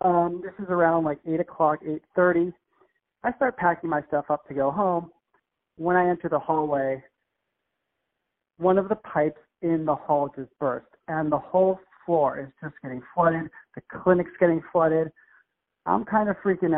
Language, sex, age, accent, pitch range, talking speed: English, male, 40-59, American, 145-185 Hz, 170 wpm